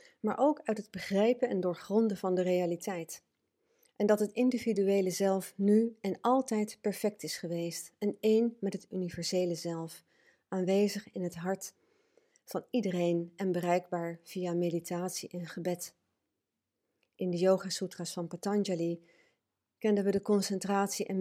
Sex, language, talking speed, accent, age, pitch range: female, English, 140 wpm, Dutch, 40-59, 170-205 Hz